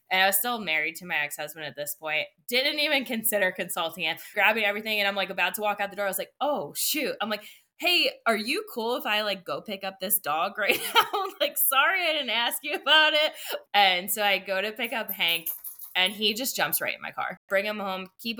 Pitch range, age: 165-210 Hz, 20-39